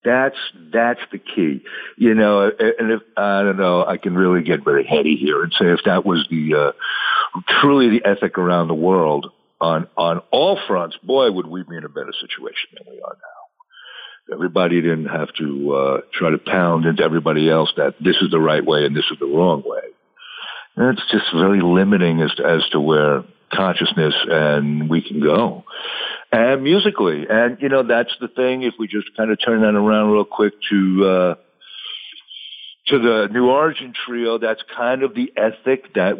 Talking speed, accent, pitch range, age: 195 wpm, American, 90-150 Hz, 60-79